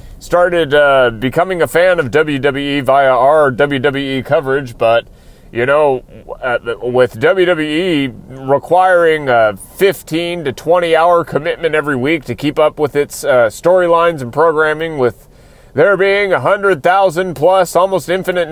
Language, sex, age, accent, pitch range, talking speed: English, male, 30-49, American, 135-185 Hz, 130 wpm